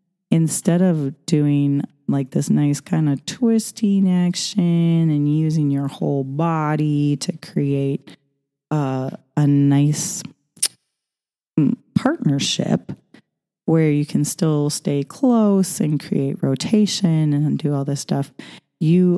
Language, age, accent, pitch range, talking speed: English, 30-49, American, 140-185 Hz, 115 wpm